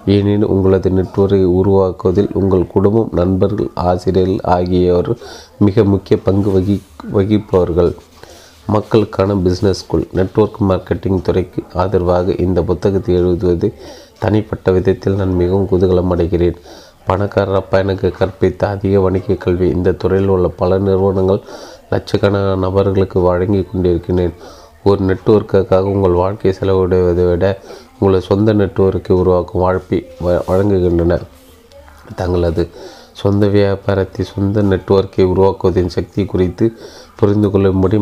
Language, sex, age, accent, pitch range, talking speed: Tamil, male, 30-49, native, 90-100 Hz, 105 wpm